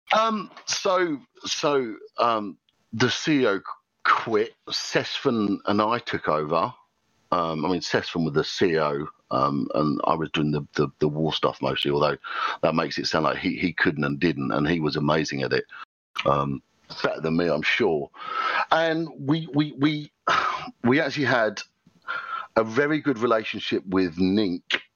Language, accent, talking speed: English, British, 160 wpm